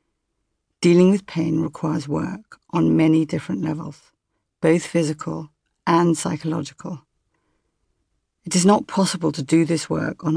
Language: English